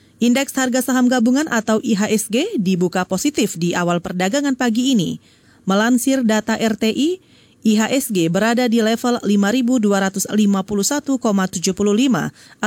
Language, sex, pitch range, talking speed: Indonesian, female, 205-260 Hz, 100 wpm